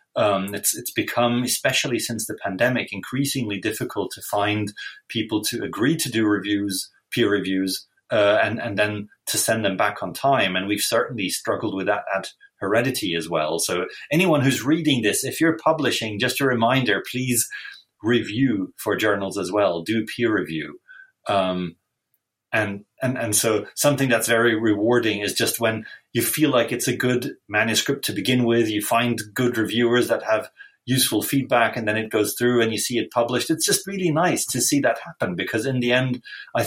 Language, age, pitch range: English, 30-49, 105-140 Hz